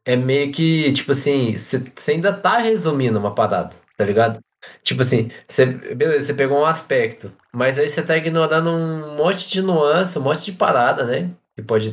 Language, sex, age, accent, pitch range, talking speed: Portuguese, male, 20-39, Brazilian, 110-145 Hz, 185 wpm